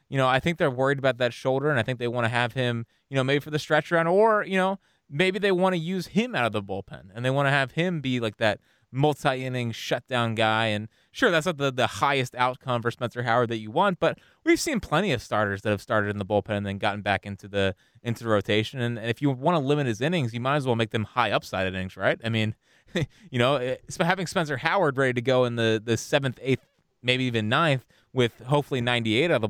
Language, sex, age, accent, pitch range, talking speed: English, male, 20-39, American, 110-140 Hz, 255 wpm